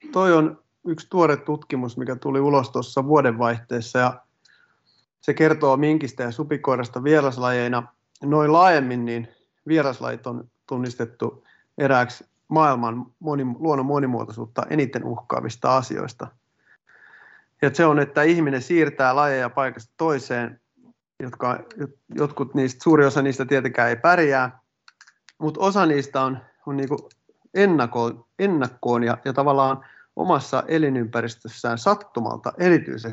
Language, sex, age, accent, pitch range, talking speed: Finnish, male, 30-49, native, 125-150 Hz, 110 wpm